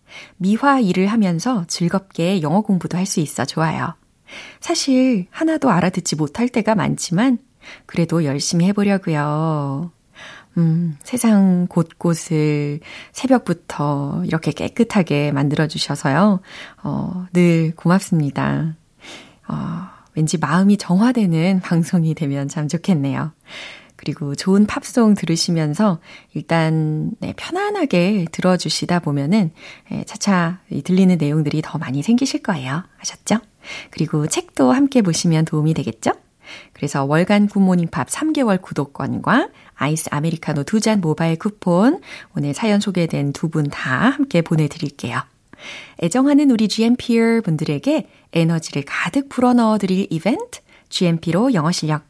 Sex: female